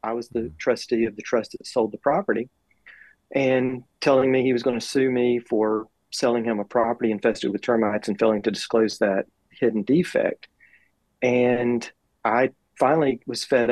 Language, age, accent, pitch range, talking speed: English, 40-59, American, 110-125 Hz, 170 wpm